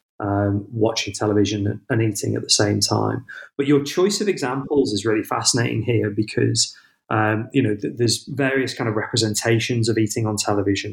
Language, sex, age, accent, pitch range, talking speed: English, male, 30-49, British, 105-120 Hz, 175 wpm